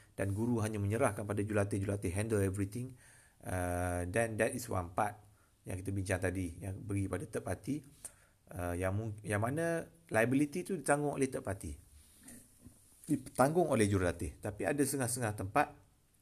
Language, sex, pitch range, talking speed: Malay, male, 95-130 Hz, 150 wpm